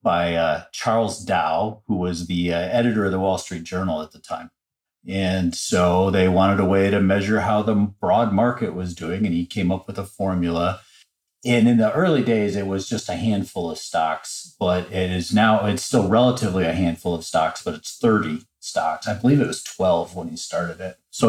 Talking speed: 210 wpm